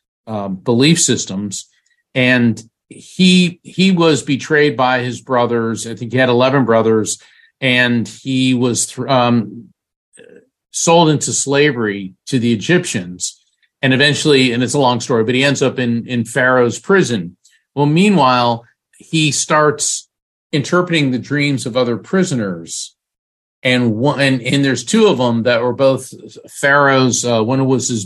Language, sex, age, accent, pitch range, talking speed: English, male, 50-69, American, 115-140 Hz, 150 wpm